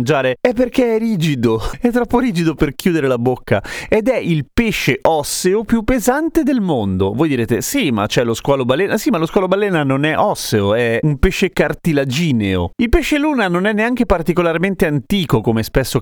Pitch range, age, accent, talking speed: 135-215 Hz, 30-49, native, 185 wpm